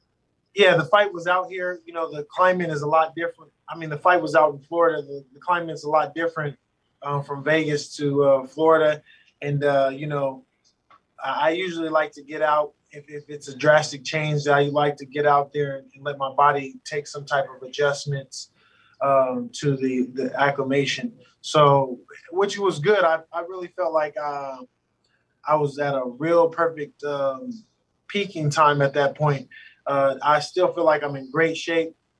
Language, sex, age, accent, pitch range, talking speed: English, male, 20-39, American, 140-160 Hz, 190 wpm